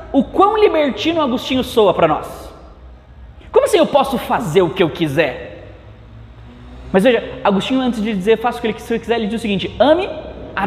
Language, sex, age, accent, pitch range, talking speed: Portuguese, male, 20-39, Brazilian, 140-220 Hz, 190 wpm